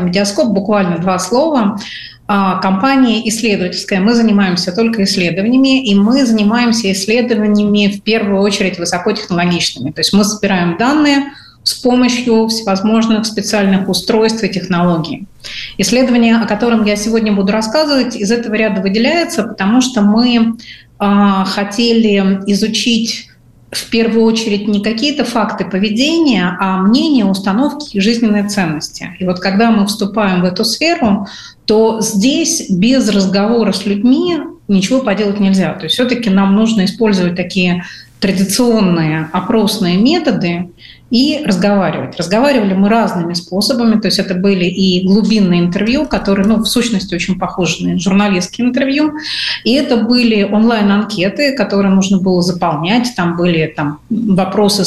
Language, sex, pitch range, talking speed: Russian, female, 190-230 Hz, 130 wpm